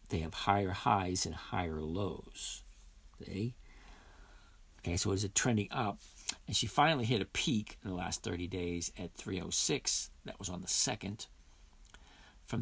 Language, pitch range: English, 90-115 Hz